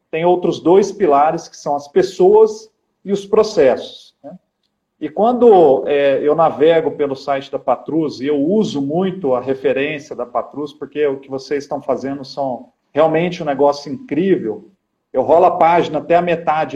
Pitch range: 145-185 Hz